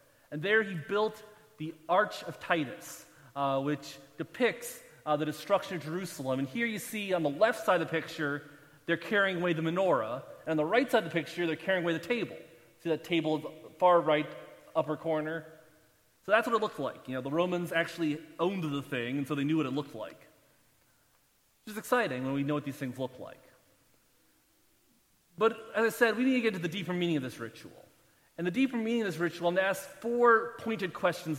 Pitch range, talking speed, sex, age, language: 155-200 Hz, 220 wpm, male, 30-49, English